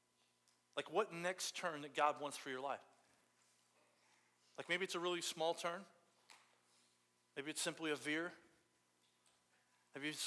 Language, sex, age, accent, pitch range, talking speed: English, male, 40-59, American, 150-180 Hz, 140 wpm